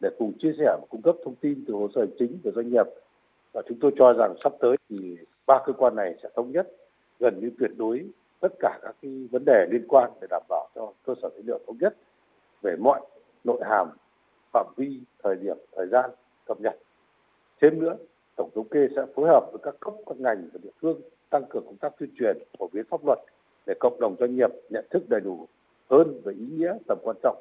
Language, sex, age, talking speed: Vietnamese, male, 60-79, 235 wpm